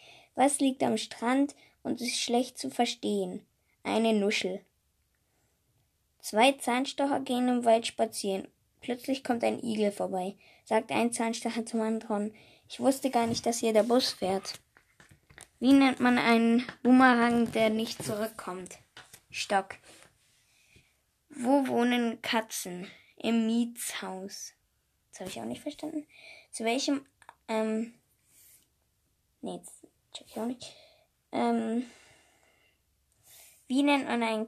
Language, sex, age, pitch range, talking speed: English, female, 20-39, 210-250 Hz, 110 wpm